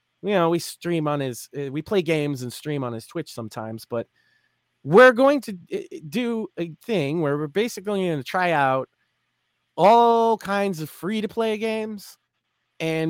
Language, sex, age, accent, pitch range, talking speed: English, male, 30-49, American, 140-195 Hz, 170 wpm